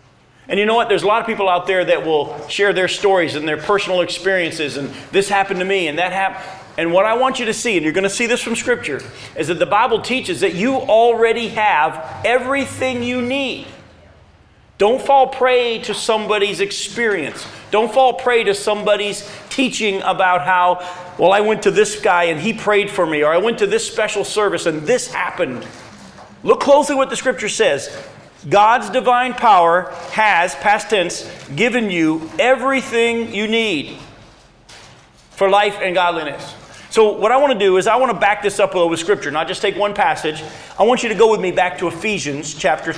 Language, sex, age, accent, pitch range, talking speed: English, male, 40-59, American, 180-230 Hz, 200 wpm